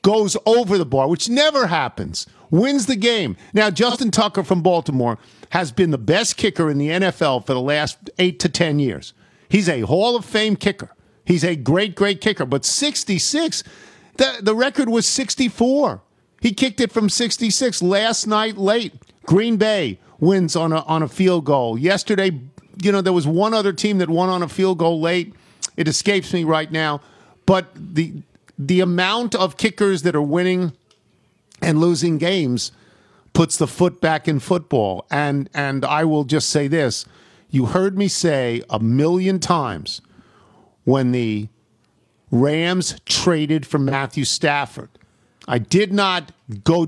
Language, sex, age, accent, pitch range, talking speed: English, male, 50-69, American, 145-200 Hz, 165 wpm